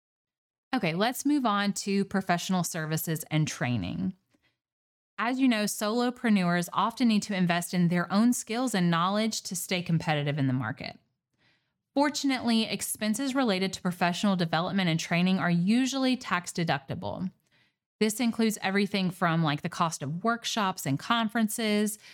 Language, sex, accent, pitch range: English, female, American, 165-220 Hz